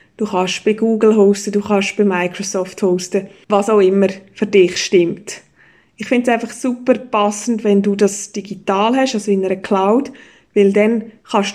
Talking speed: 175 wpm